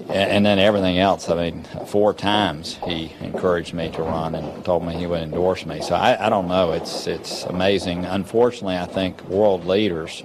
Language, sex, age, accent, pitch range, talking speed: English, male, 50-69, American, 80-95 Hz, 195 wpm